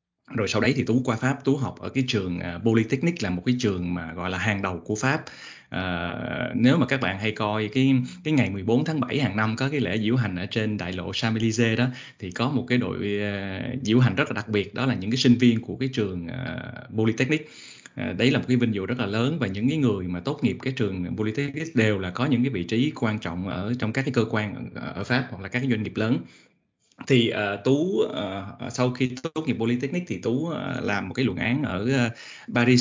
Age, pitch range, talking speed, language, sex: 20-39, 105-130 Hz, 250 wpm, Vietnamese, male